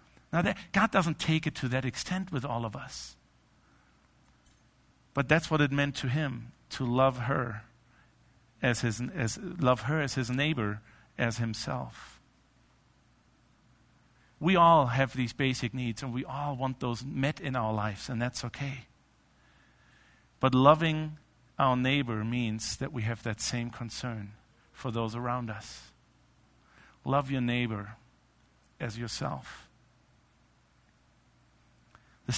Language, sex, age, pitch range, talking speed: English, male, 50-69, 115-140 Hz, 135 wpm